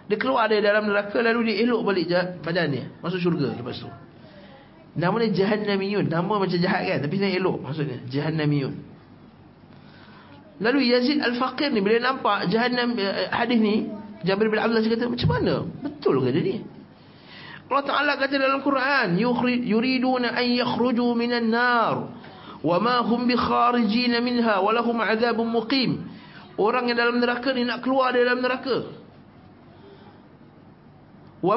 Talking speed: 150 wpm